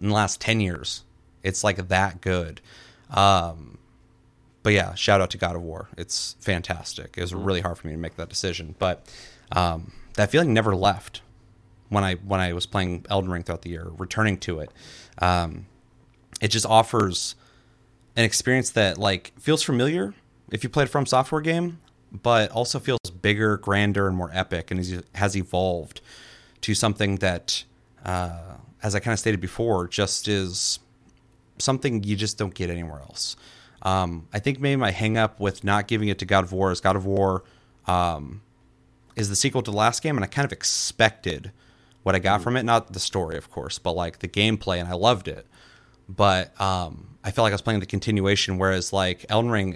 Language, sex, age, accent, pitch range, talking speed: English, male, 30-49, American, 90-115 Hz, 195 wpm